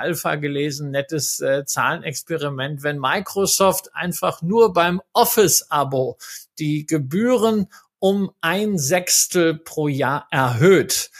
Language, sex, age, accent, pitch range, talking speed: German, male, 50-69, German, 140-180 Hz, 100 wpm